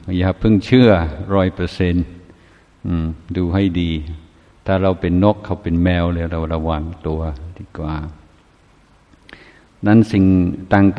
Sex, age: male, 60-79